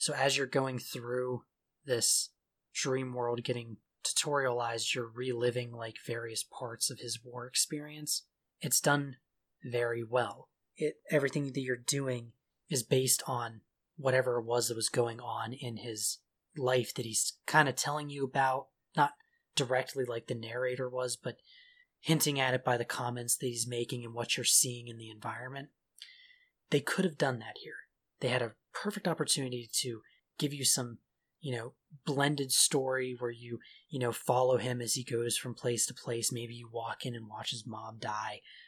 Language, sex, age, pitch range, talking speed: English, male, 30-49, 120-140 Hz, 170 wpm